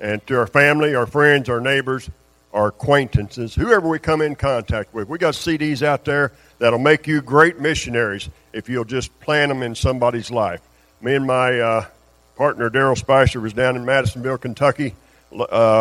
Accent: American